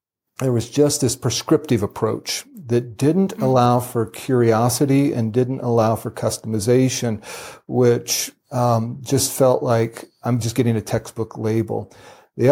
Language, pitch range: English, 110-130 Hz